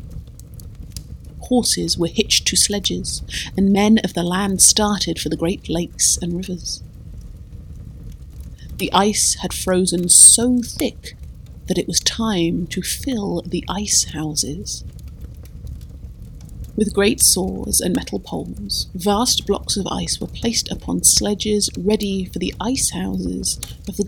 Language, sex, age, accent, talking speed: English, female, 30-49, British, 125 wpm